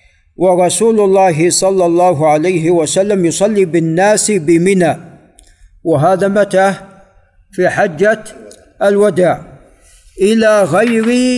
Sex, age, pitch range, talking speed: male, 50-69, 145-190 Hz, 90 wpm